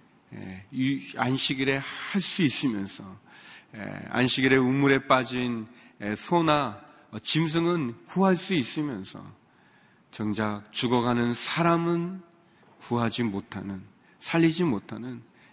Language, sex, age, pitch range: Korean, male, 40-59, 110-160 Hz